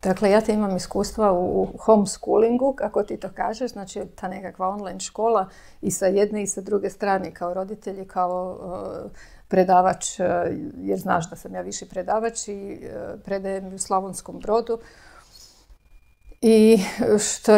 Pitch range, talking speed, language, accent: 175-200 Hz, 150 wpm, Croatian, native